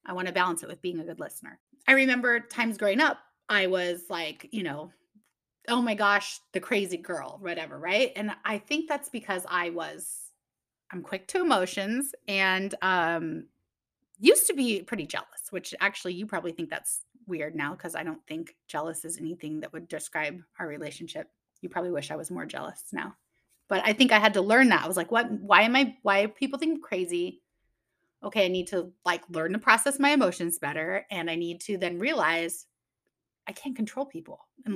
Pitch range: 180-235 Hz